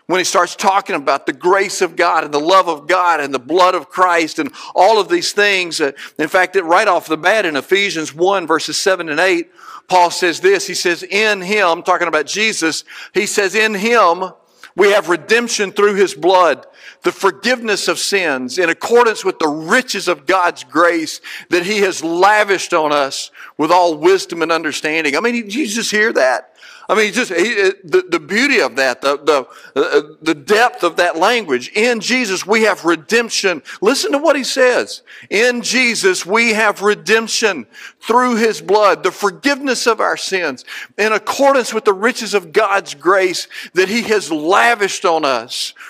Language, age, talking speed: English, 50-69, 185 wpm